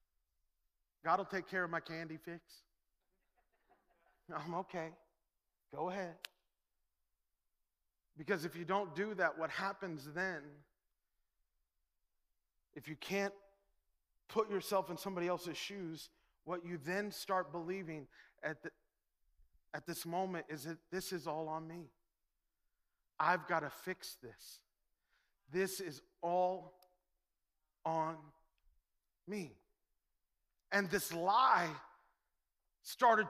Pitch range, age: 165-225 Hz, 40-59